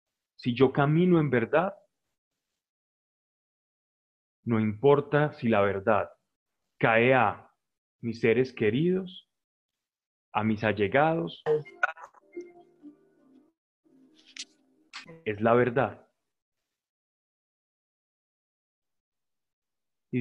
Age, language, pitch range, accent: 30-49, Spanish, 110-155 Hz, Colombian